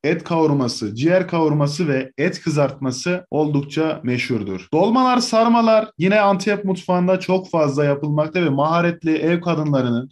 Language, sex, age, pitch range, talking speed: Turkish, male, 20-39, 140-180 Hz, 125 wpm